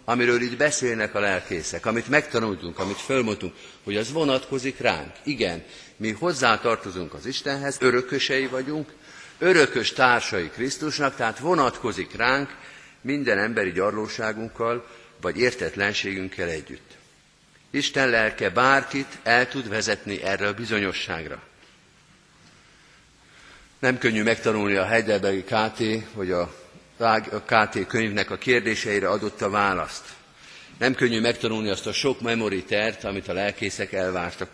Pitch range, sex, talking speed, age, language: 95-130 Hz, male, 120 wpm, 50-69, Hungarian